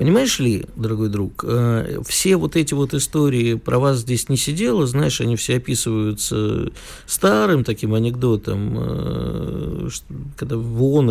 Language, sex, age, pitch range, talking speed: Russian, male, 50-69, 115-155 Hz, 130 wpm